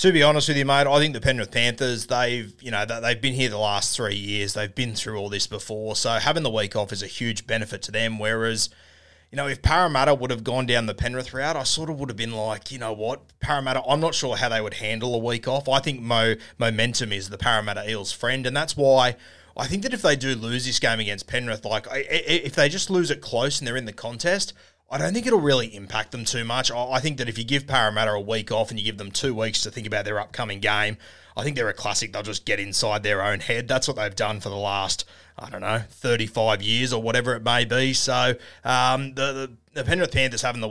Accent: Australian